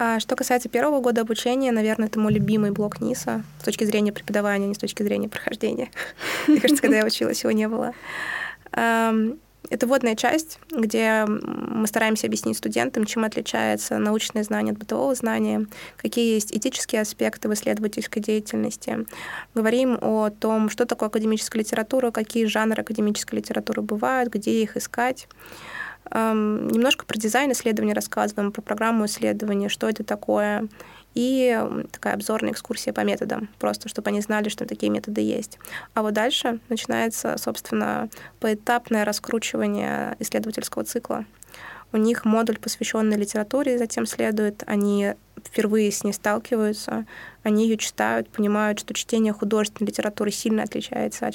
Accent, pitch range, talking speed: native, 210-235 Hz, 145 wpm